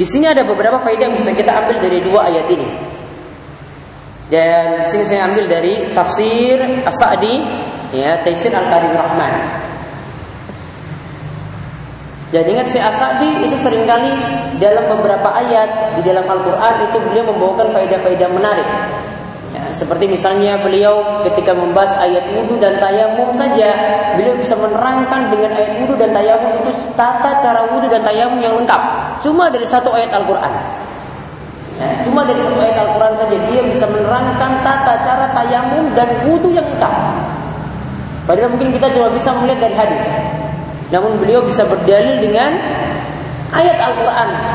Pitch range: 185-240 Hz